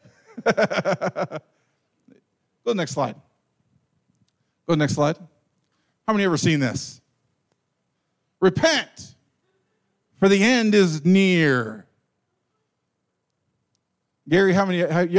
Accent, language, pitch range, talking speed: American, English, 145-210 Hz, 100 wpm